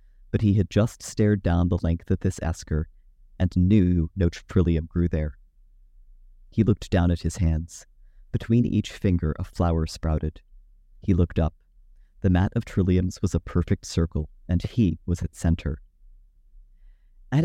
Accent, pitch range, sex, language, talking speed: American, 85-105 Hz, male, English, 160 wpm